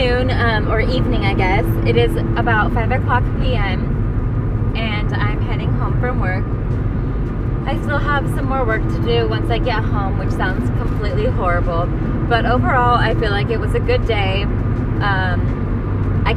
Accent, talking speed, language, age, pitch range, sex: American, 165 wpm, English, 20-39, 110-120 Hz, female